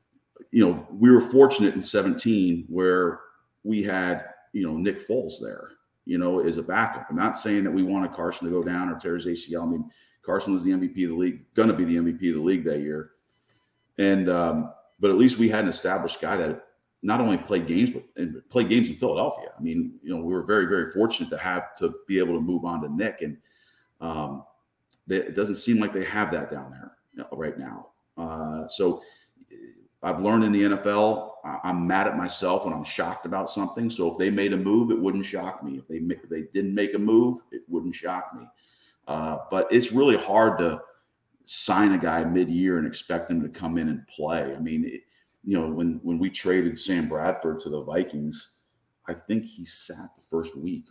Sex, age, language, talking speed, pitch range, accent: male, 40-59, English, 215 wpm, 85-115 Hz, American